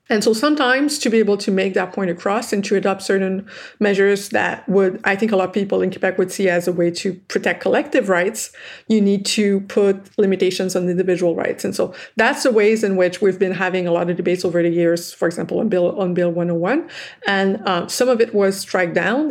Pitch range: 185-210 Hz